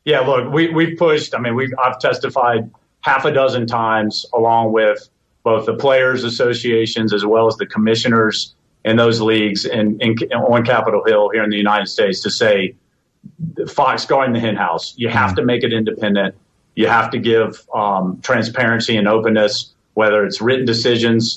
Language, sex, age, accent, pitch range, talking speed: English, male, 40-59, American, 110-130 Hz, 180 wpm